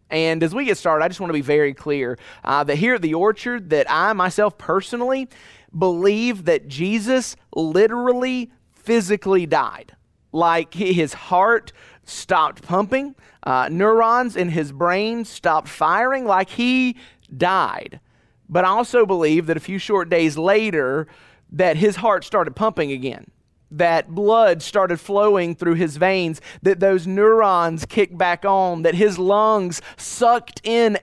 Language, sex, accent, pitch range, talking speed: English, male, American, 160-210 Hz, 150 wpm